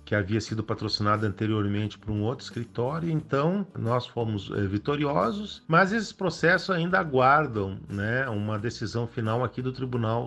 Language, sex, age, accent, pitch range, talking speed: Portuguese, male, 50-69, Brazilian, 105-160 Hz, 145 wpm